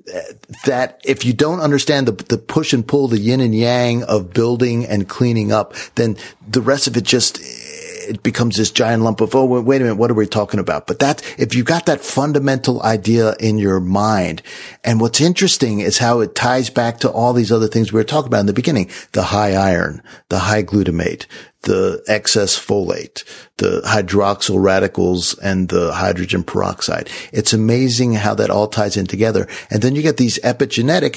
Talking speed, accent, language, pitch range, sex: 195 wpm, American, English, 105-130 Hz, male